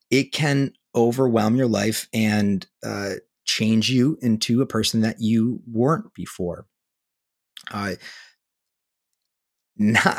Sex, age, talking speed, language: male, 30-49, 100 wpm, English